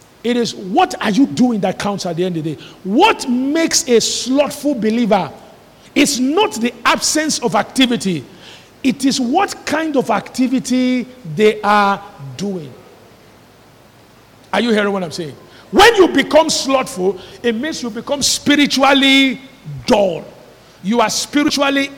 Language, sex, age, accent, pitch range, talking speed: English, male, 50-69, Nigerian, 185-245 Hz, 145 wpm